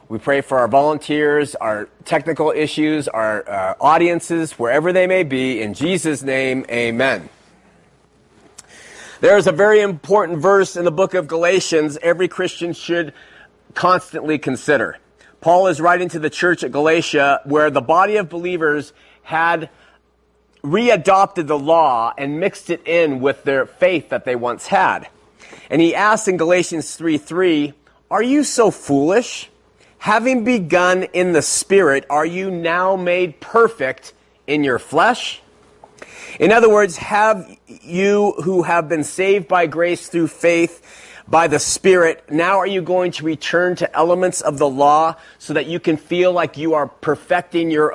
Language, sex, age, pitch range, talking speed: English, male, 40-59, 150-180 Hz, 155 wpm